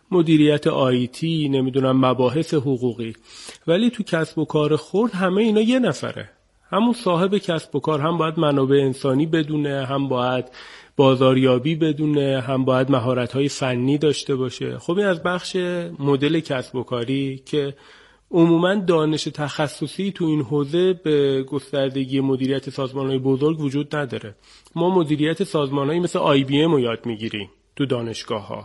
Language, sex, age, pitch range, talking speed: Persian, male, 30-49, 135-175 Hz, 140 wpm